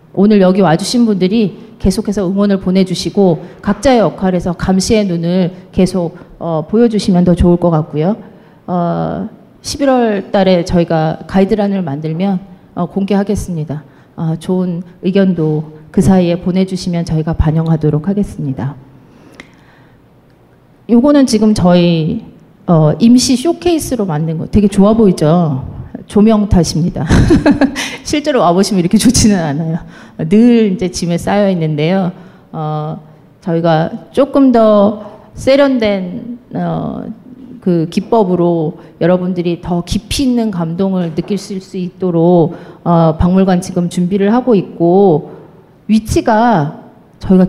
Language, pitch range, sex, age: Korean, 165-215 Hz, female, 40-59